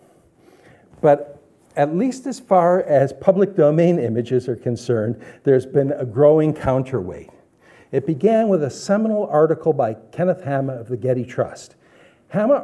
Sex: male